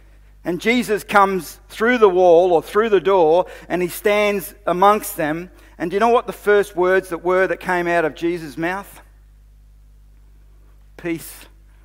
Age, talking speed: 50-69, 160 wpm